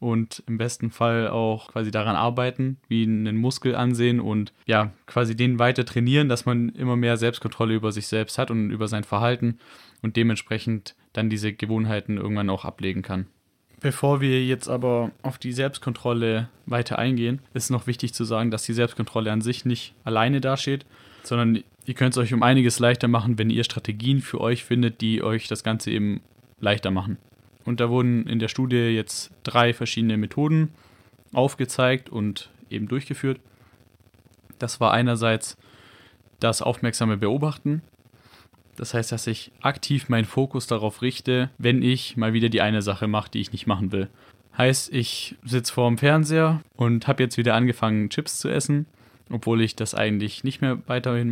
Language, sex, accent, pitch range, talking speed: German, male, German, 110-125 Hz, 175 wpm